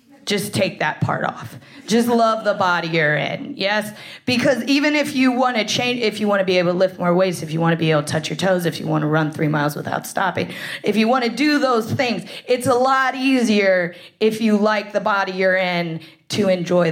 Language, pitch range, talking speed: English, 160-220 Hz, 240 wpm